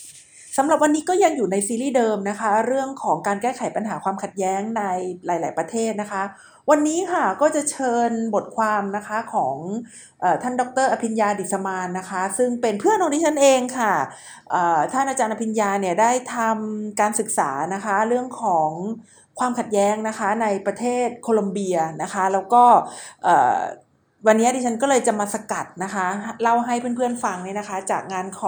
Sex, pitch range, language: female, 200-260 Hz, Thai